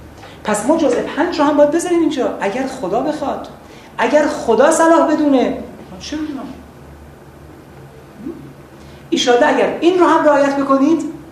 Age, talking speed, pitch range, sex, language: 30-49, 120 wpm, 200-290 Hz, male, Persian